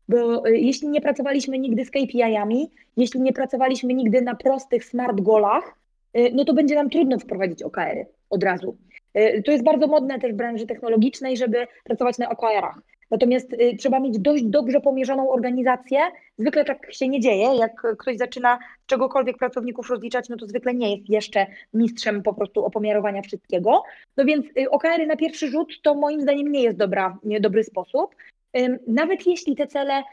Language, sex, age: Polish, female, 20-39